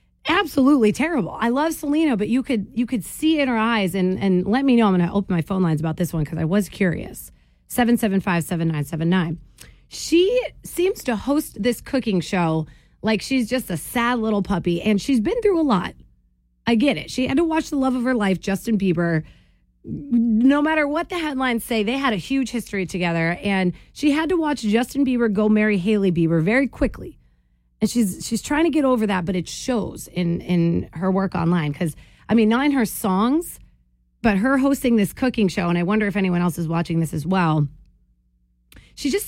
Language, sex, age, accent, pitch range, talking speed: English, female, 30-49, American, 175-255 Hz, 215 wpm